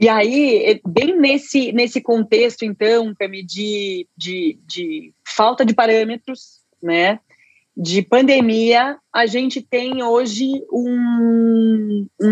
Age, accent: 30-49, Brazilian